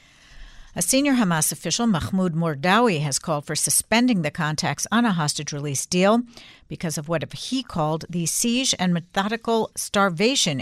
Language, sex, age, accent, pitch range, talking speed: English, female, 60-79, American, 160-215 Hz, 155 wpm